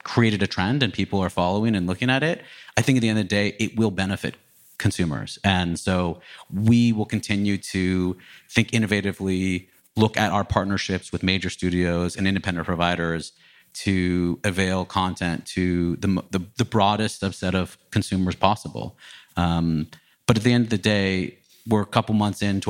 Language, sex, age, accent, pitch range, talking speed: English, male, 30-49, American, 90-100 Hz, 175 wpm